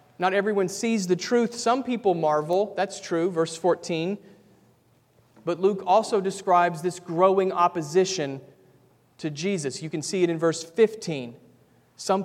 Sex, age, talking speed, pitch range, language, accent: male, 40-59, 140 wpm, 160-190 Hz, English, American